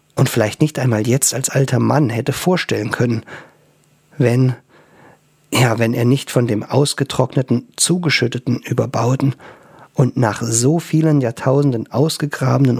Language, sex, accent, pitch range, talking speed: German, male, German, 115-145 Hz, 125 wpm